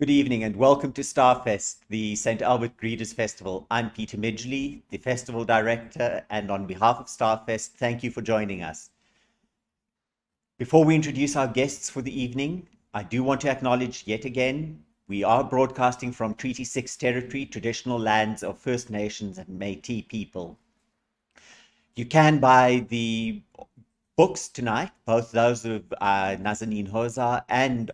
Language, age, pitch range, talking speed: English, 50-69, 110-130 Hz, 150 wpm